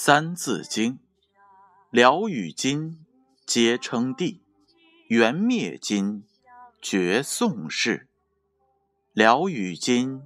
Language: Chinese